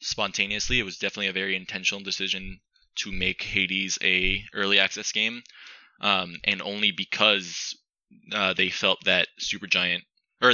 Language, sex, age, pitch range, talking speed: English, male, 20-39, 90-105 Hz, 150 wpm